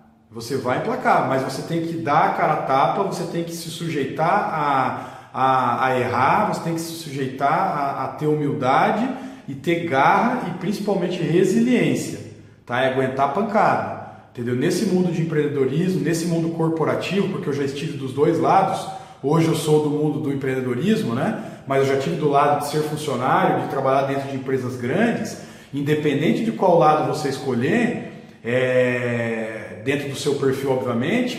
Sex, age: male, 40-59